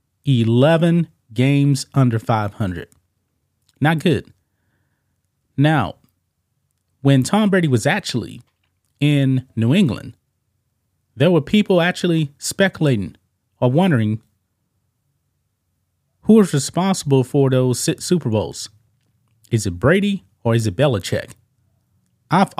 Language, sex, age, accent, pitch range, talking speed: English, male, 30-49, American, 110-150 Hz, 100 wpm